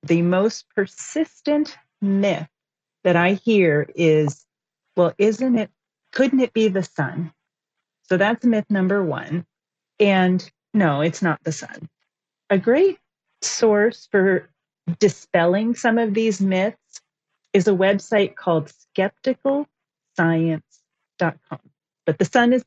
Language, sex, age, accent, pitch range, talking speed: English, female, 40-59, American, 155-205 Hz, 120 wpm